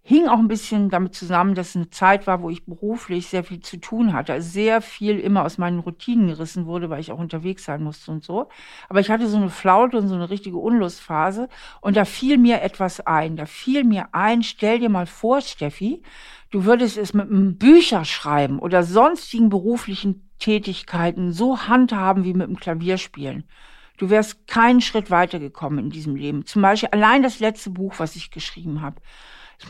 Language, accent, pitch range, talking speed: German, German, 180-235 Hz, 195 wpm